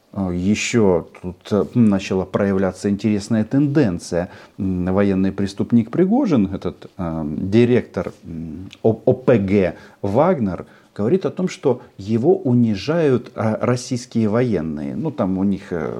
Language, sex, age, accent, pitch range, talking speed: Russian, male, 40-59, native, 95-140 Hz, 95 wpm